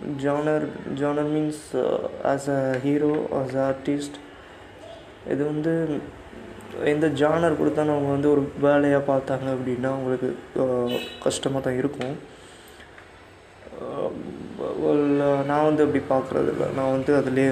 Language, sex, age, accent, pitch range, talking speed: Tamil, male, 20-39, native, 120-145 Hz, 115 wpm